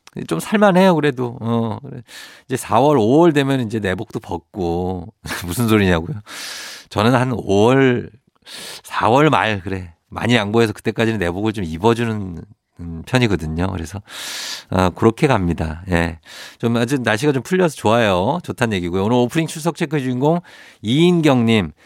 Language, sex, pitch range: Korean, male, 100-145 Hz